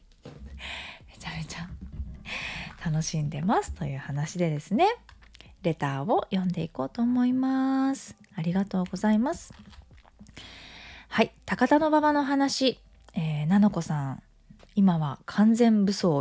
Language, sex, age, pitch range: Japanese, female, 20-39, 170-250 Hz